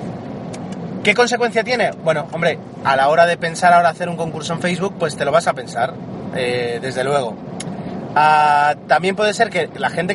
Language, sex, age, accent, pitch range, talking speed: Spanish, male, 30-49, Spanish, 150-195 Hz, 190 wpm